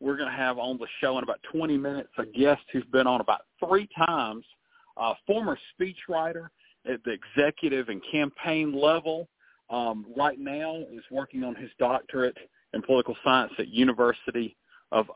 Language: English